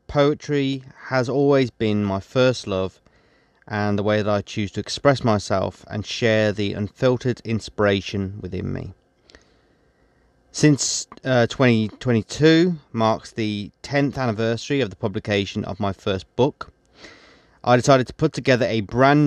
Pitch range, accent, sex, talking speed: 100-120 Hz, British, male, 135 wpm